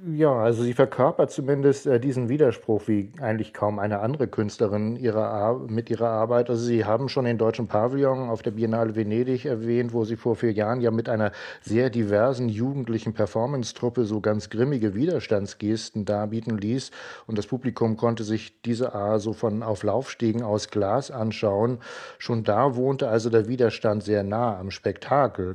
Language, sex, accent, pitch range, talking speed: German, male, German, 110-125 Hz, 170 wpm